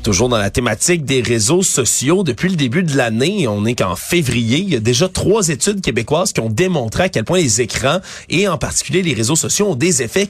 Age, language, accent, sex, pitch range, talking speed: 30-49, French, Canadian, male, 125-180 Hz, 235 wpm